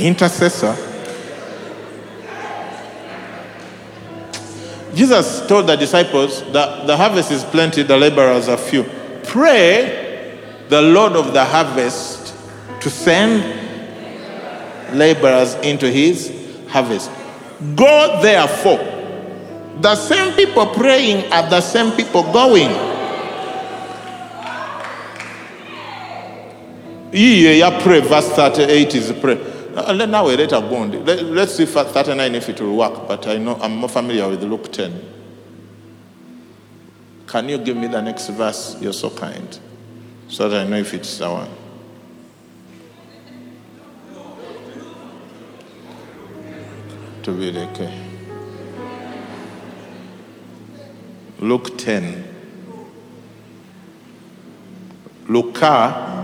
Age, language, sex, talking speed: 50-69, English, male, 95 wpm